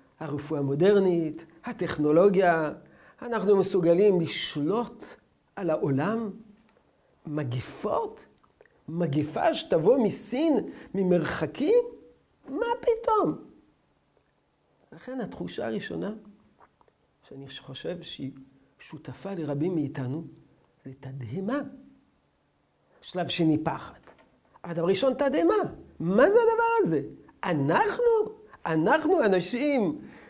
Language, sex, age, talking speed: Hebrew, male, 50-69, 75 wpm